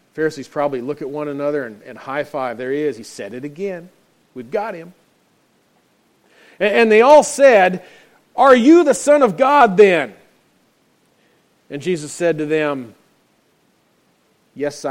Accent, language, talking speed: American, English, 150 wpm